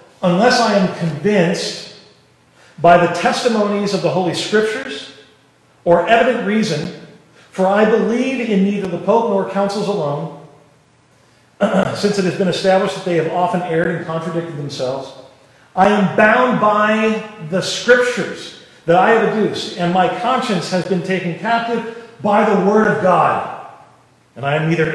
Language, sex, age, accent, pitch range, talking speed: English, male, 40-59, American, 145-200 Hz, 150 wpm